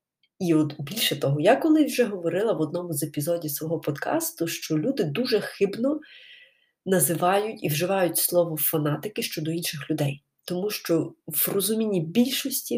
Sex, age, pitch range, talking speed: female, 20-39, 160-205 Hz, 145 wpm